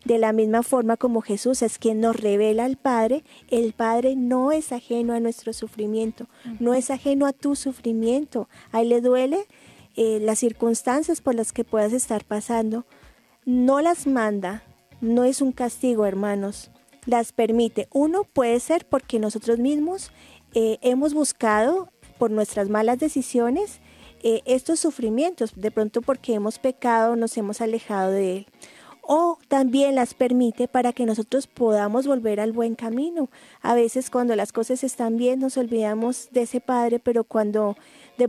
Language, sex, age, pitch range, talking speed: Spanish, female, 30-49, 225-260 Hz, 160 wpm